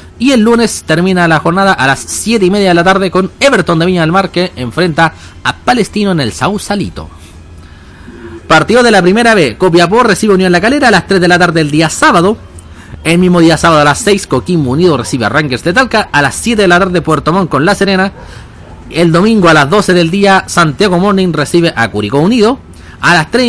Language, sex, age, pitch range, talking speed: Spanish, male, 30-49, 150-205 Hz, 230 wpm